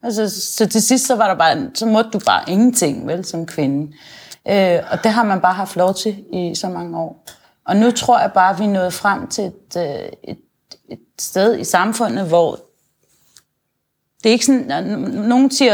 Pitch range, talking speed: 175-220 Hz, 195 wpm